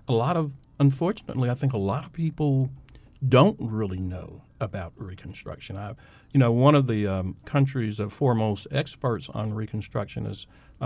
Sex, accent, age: male, American, 50-69